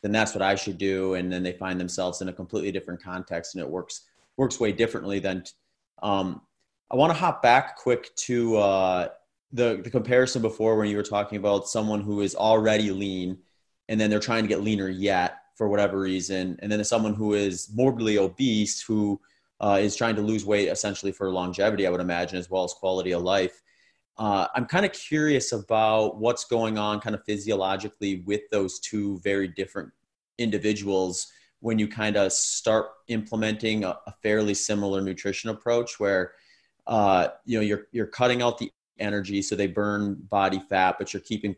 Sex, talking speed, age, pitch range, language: male, 190 wpm, 30-49, 95-110 Hz, English